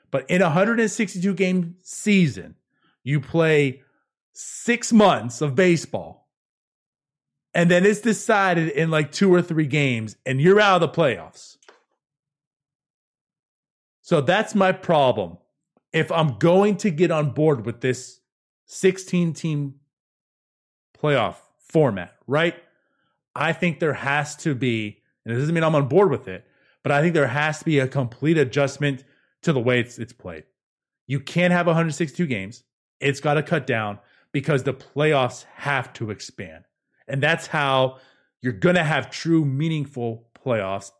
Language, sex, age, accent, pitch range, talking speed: English, male, 30-49, American, 130-170 Hz, 145 wpm